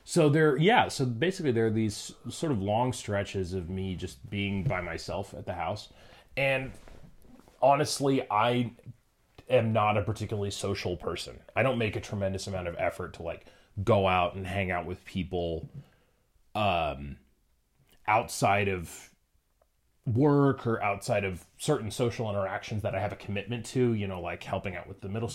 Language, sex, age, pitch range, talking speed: English, male, 30-49, 95-120 Hz, 170 wpm